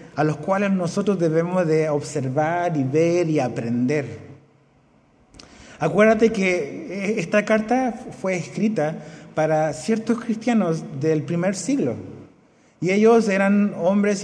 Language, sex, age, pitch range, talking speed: Spanish, male, 30-49, 160-205 Hz, 115 wpm